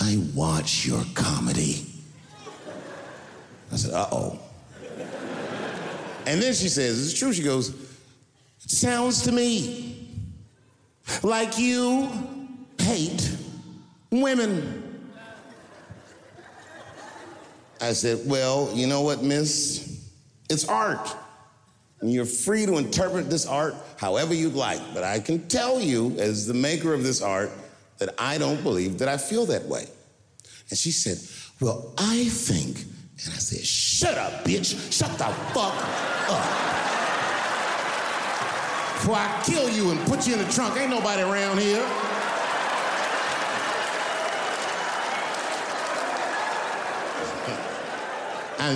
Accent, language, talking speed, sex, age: American, English, 115 wpm, male, 50-69